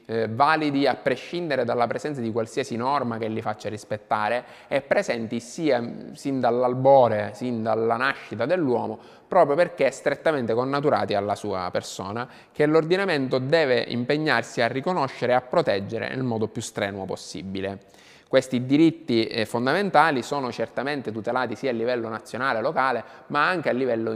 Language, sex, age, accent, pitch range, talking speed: Italian, male, 20-39, native, 110-130 Hz, 145 wpm